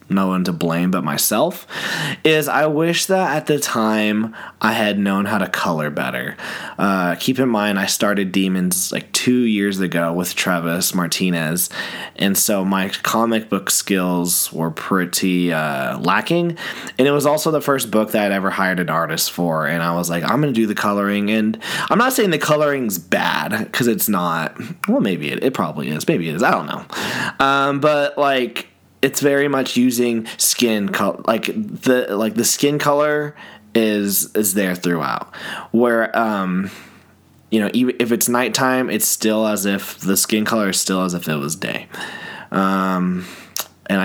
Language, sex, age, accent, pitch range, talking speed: English, male, 20-39, American, 95-120 Hz, 180 wpm